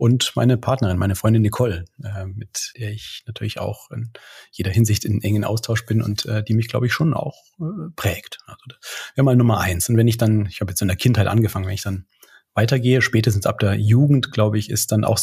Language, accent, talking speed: German, German, 220 wpm